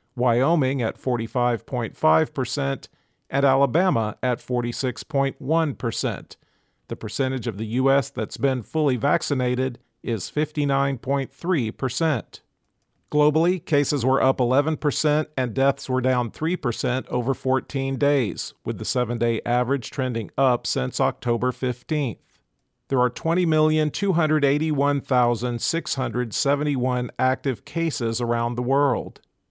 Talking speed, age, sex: 100 wpm, 50-69, male